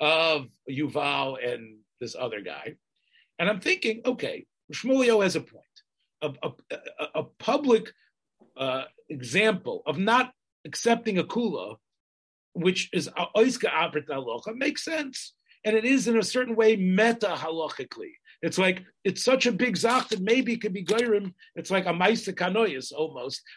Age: 50-69